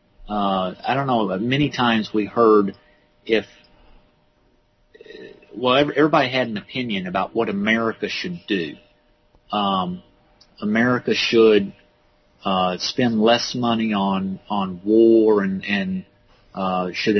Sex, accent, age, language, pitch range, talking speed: male, American, 40-59, English, 100-125 Hz, 115 wpm